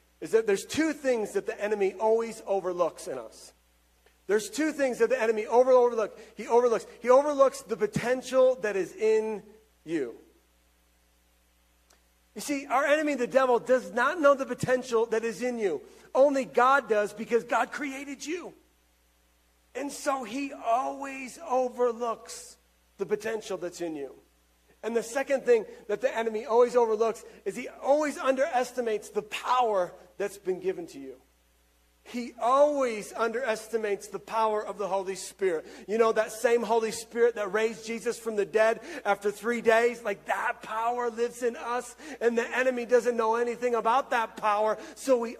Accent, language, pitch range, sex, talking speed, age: American, English, 180-250 Hz, male, 160 wpm, 40-59